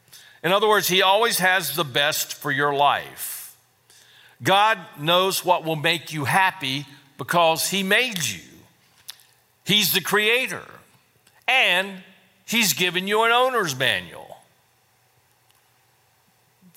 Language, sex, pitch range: English, male, 125-180 Hz